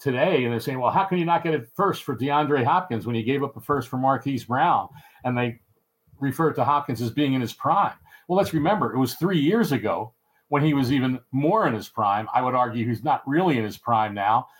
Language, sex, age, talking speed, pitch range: English, male, 50-69, 245 wpm, 125-155 Hz